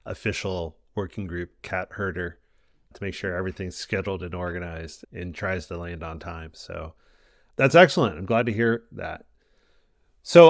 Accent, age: American, 30-49